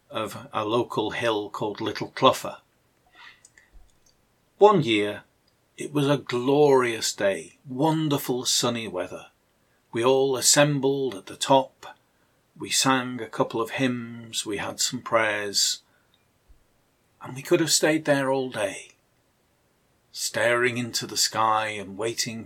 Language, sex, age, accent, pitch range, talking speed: English, male, 50-69, British, 105-135 Hz, 125 wpm